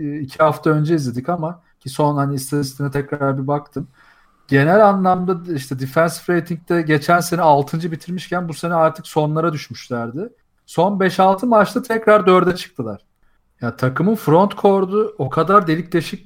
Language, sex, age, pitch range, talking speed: Turkish, male, 40-59, 145-185 Hz, 150 wpm